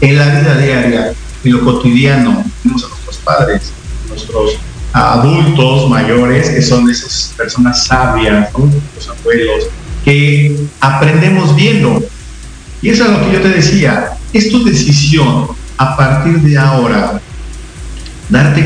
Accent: Mexican